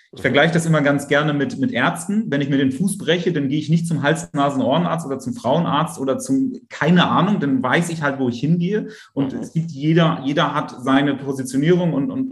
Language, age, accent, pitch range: German, 30-49, German, 125-165 Hz